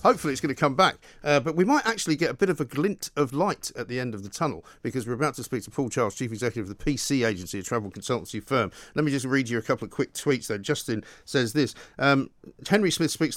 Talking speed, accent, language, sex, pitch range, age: 275 wpm, British, English, male, 120-155 Hz, 50-69